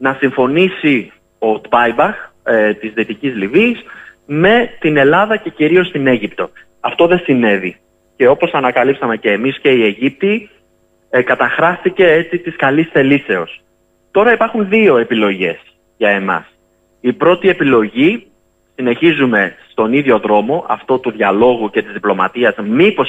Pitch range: 105-165 Hz